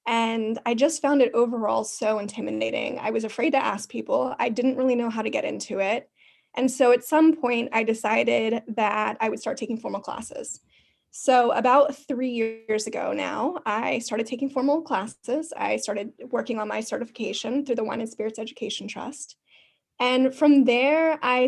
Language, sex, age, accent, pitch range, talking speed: English, female, 10-29, American, 225-260 Hz, 180 wpm